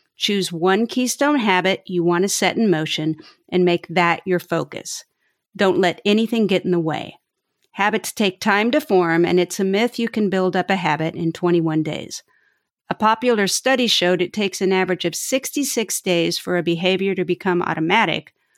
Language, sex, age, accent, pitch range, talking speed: English, female, 50-69, American, 175-220 Hz, 185 wpm